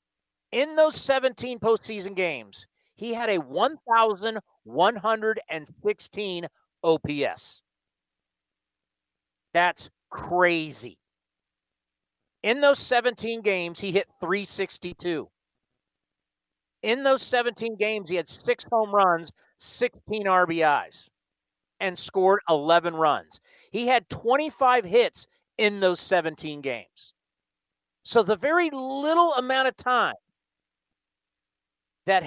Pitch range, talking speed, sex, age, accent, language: 145-230 Hz, 95 wpm, male, 40-59, American, English